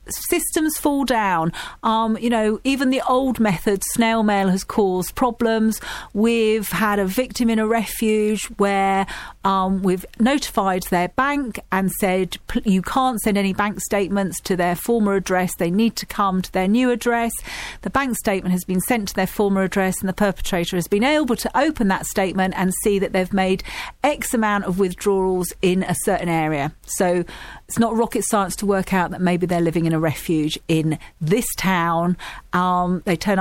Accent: British